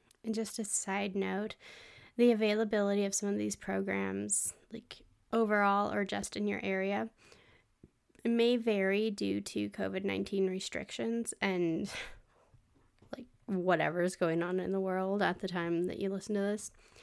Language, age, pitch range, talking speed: English, 10-29, 180-215 Hz, 150 wpm